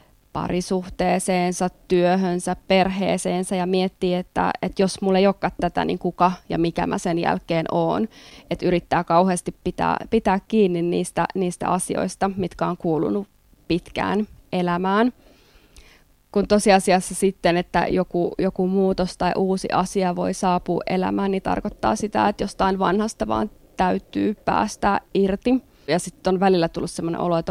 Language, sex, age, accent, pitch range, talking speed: Finnish, female, 20-39, native, 175-195 Hz, 140 wpm